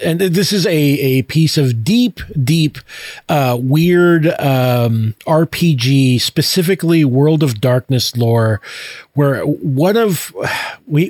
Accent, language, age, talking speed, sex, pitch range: American, English, 40-59, 120 wpm, male, 130-160 Hz